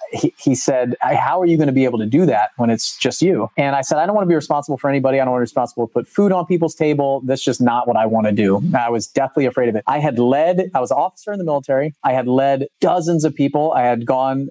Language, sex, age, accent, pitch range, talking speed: English, male, 30-49, American, 130-165 Hz, 310 wpm